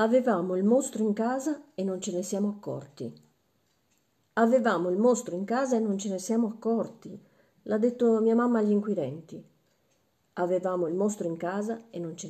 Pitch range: 165-225 Hz